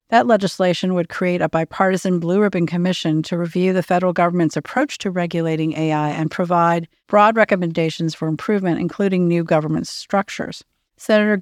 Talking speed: 150 wpm